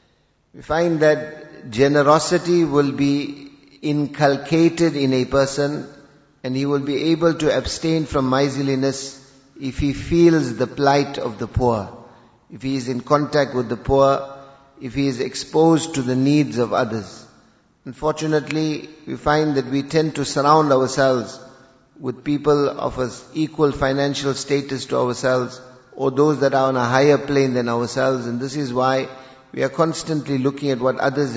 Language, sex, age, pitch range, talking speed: English, male, 50-69, 125-145 Hz, 155 wpm